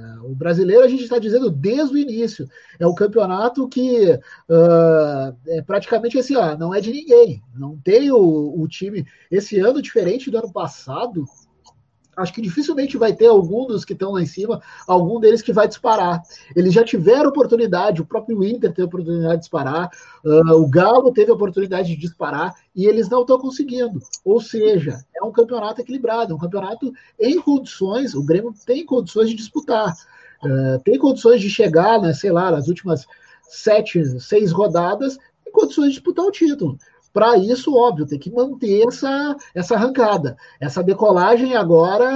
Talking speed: 170 wpm